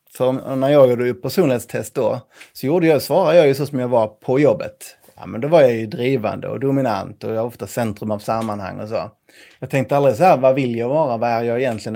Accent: native